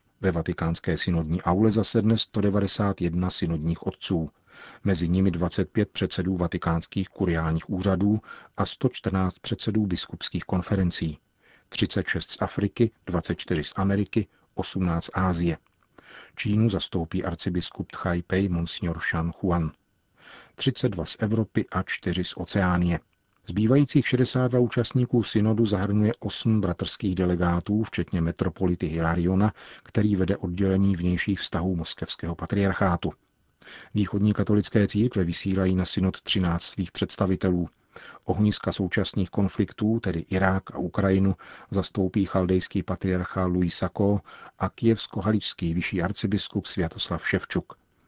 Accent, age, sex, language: native, 40-59, male, Czech